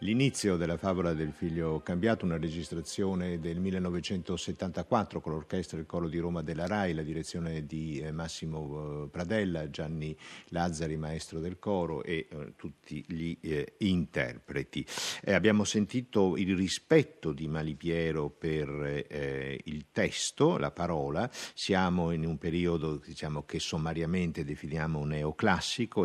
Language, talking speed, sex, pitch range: Italian, 130 wpm, male, 80-95 Hz